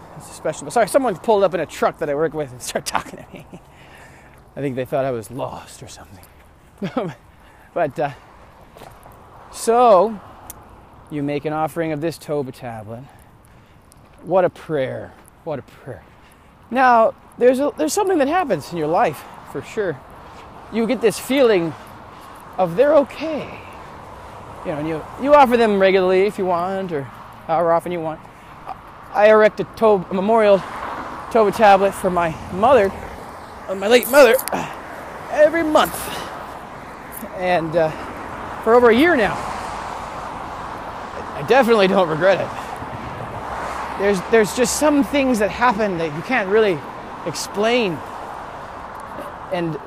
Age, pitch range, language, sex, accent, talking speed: 20-39, 160-230 Hz, English, male, American, 145 wpm